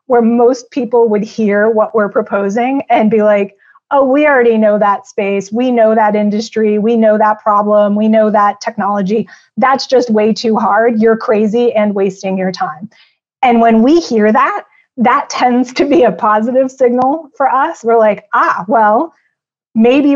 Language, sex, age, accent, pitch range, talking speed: English, female, 30-49, American, 210-245 Hz, 175 wpm